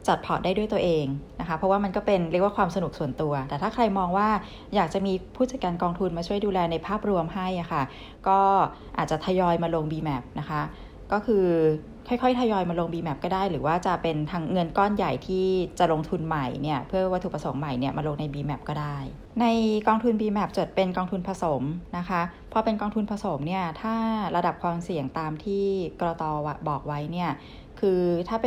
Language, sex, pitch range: English, female, 155-200 Hz